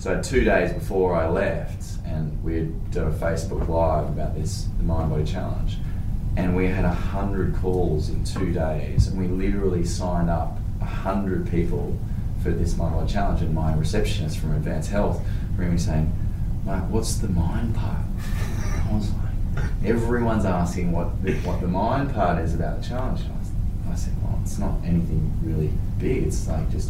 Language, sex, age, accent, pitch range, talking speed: English, male, 20-39, Australian, 85-100 Hz, 175 wpm